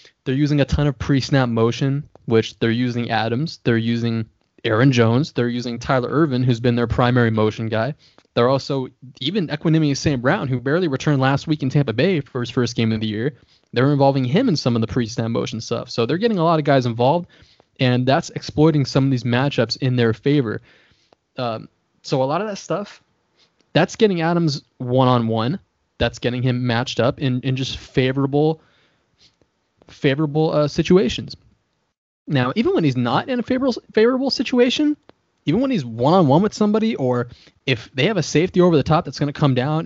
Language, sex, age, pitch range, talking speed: English, male, 20-39, 125-160 Hz, 190 wpm